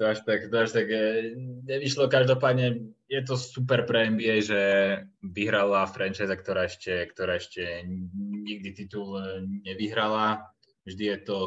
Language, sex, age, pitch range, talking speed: Slovak, male, 20-39, 95-105 Hz, 140 wpm